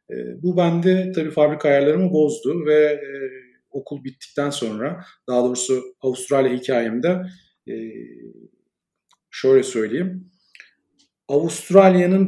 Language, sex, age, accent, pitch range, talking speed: Turkish, male, 40-59, native, 120-155 Hz, 95 wpm